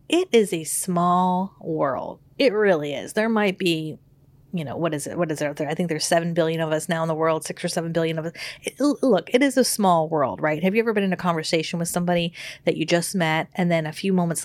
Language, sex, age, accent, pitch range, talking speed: English, female, 30-49, American, 155-205 Hz, 260 wpm